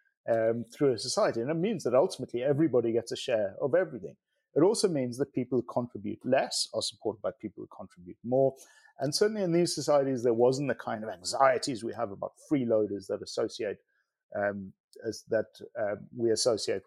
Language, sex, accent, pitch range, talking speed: English, male, British, 115-140 Hz, 185 wpm